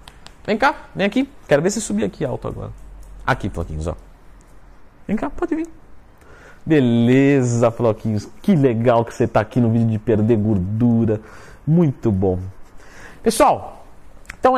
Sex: male